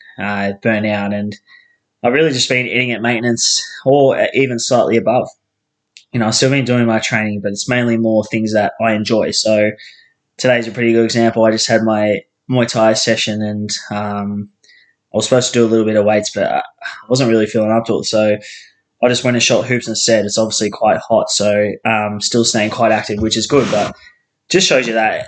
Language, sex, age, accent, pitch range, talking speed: English, male, 20-39, Australian, 105-120 Hz, 220 wpm